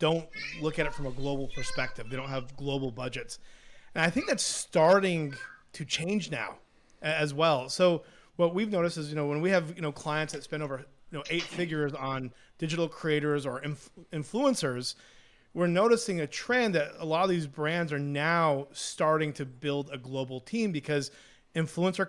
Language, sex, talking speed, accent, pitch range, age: English, male, 170 wpm, American, 135-175 Hz, 30-49